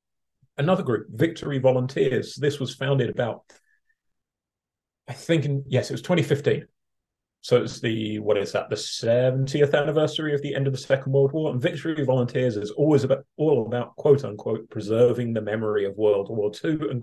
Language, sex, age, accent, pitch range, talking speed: English, male, 30-49, British, 115-150 Hz, 175 wpm